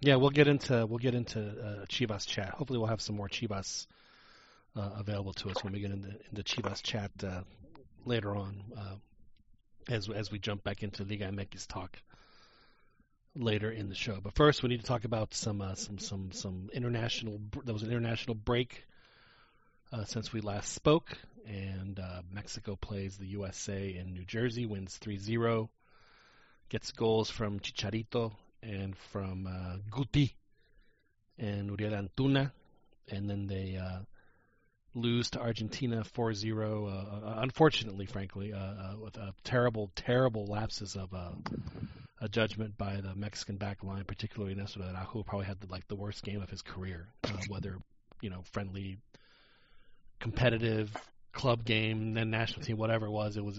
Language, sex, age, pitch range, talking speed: English, male, 30-49, 100-115 Hz, 165 wpm